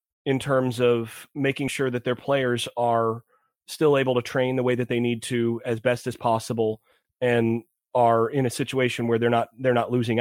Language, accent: English, American